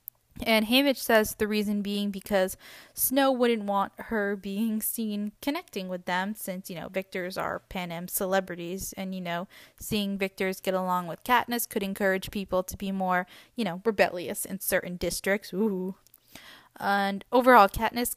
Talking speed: 160 wpm